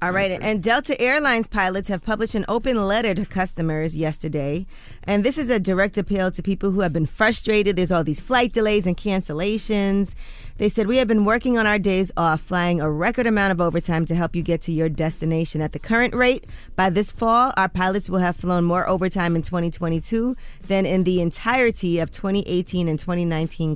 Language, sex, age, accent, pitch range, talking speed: English, female, 20-39, American, 160-195 Hz, 200 wpm